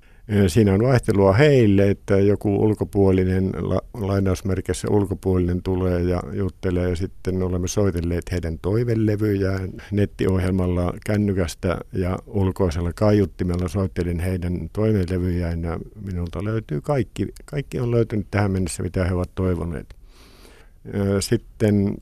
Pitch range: 90-105 Hz